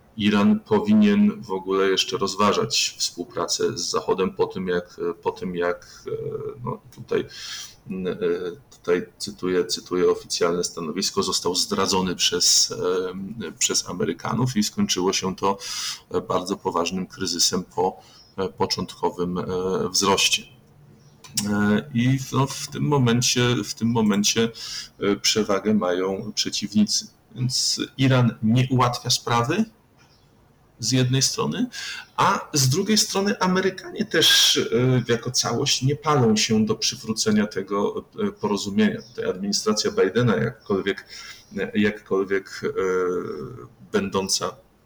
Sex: male